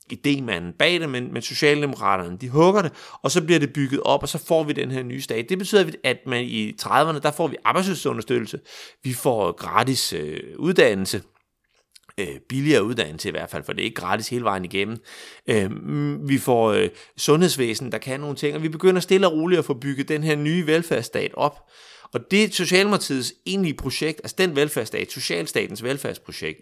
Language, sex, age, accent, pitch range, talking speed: Danish, male, 30-49, native, 130-165 Hz, 190 wpm